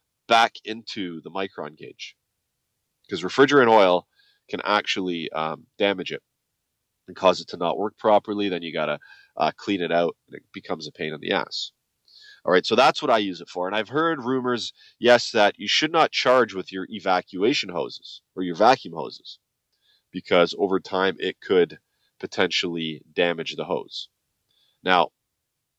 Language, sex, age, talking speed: English, male, 30-49, 170 wpm